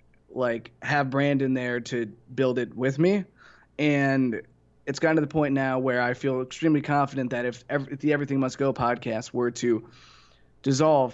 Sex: male